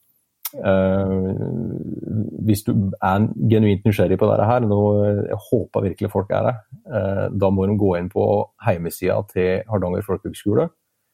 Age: 30-49